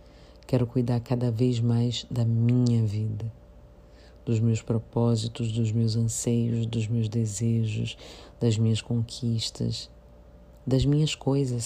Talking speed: 120 wpm